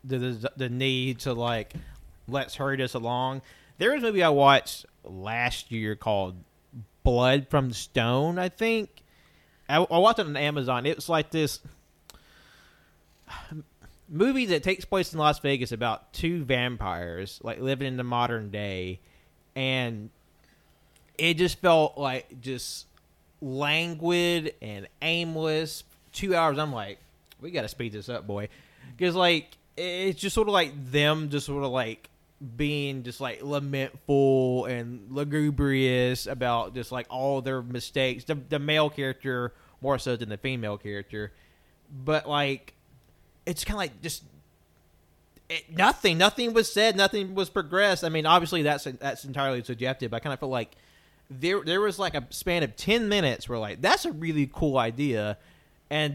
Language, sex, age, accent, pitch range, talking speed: English, male, 30-49, American, 120-155 Hz, 160 wpm